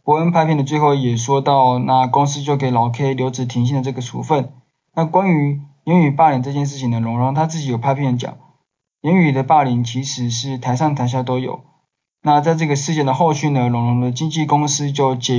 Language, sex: Chinese, male